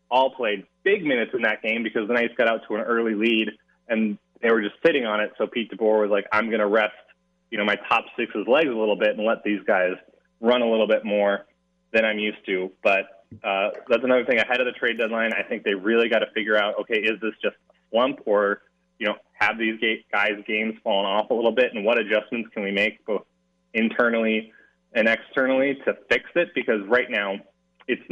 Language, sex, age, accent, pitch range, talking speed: English, male, 20-39, American, 105-120 Hz, 230 wpm